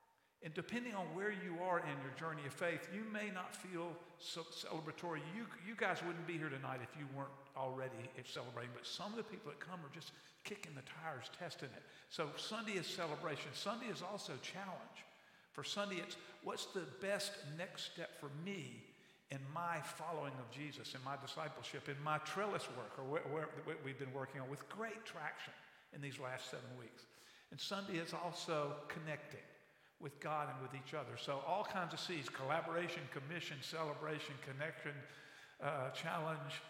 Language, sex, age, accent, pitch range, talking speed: English, male, 50-69, American, 135-180 Hz, 175 wpm